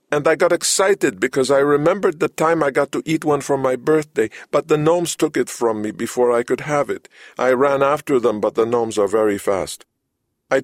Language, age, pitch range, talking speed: English, 50-69, 120-170 Hz, 225 wpm